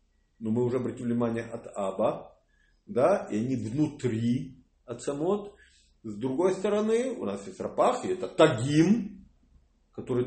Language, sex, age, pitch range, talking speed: English, male, 40-59, 110-155 Hz, 135 wpm